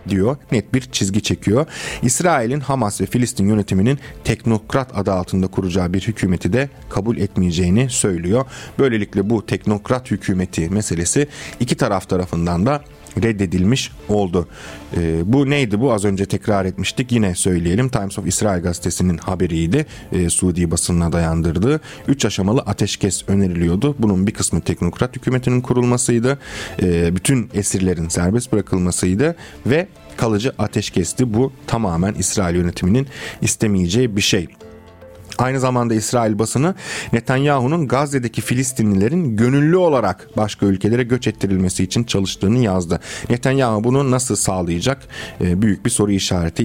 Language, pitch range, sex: Turkish, 95-130 Hz, male